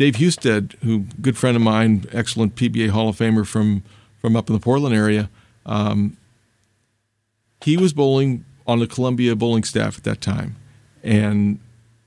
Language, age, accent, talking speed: English, 40-59, American, 160 wpm